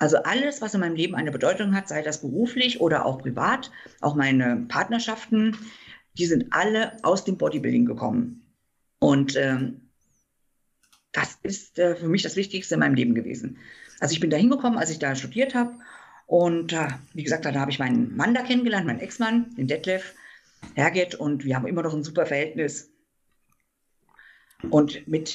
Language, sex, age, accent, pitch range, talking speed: German, female, 50-69, German, 145-205 Hz, 175 wpm